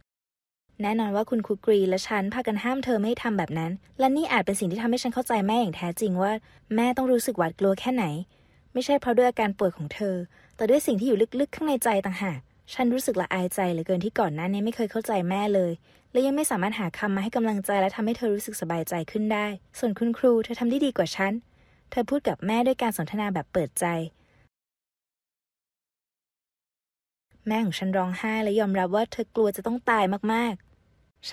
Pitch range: 185-235 Hz